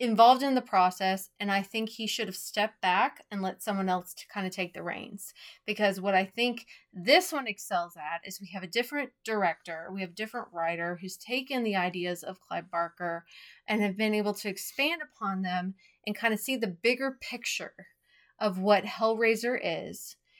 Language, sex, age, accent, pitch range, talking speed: English, female, 30-49, American, 195-240 Hz, 195 wpm